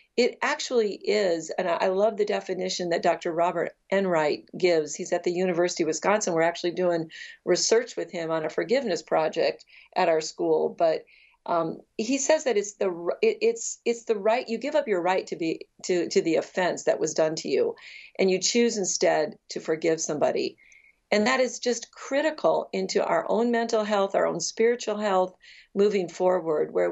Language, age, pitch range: English, 50-69, 175-230 Hz